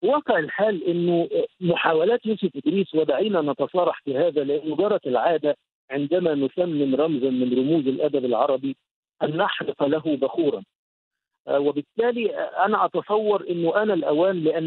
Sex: male